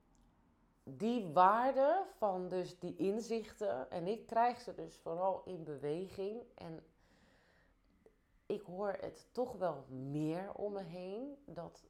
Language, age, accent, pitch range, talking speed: Dutch, 20-39, Dutch, 170-210 Hz, 125 wpm